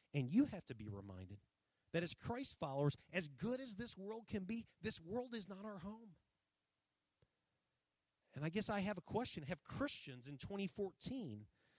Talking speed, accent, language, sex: 175 wpm, American, English, male